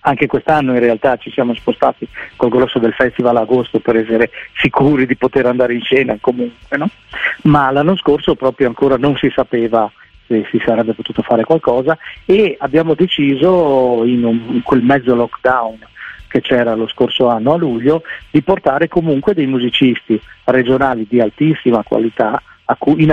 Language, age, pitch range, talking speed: Italian, 40-59, 115-145 Hz, 160 wpm